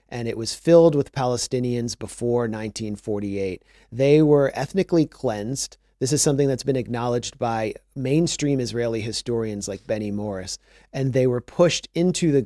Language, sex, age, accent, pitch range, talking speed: English, male, 40-59, American, 115-140 Hz, 150 wpm